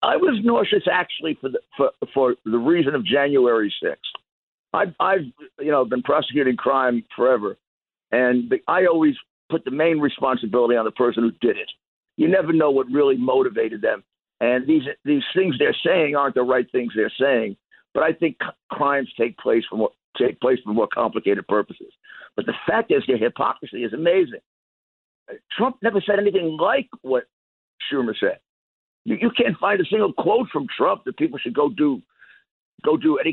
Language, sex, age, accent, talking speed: English, male, 60-79, American, 180 wpm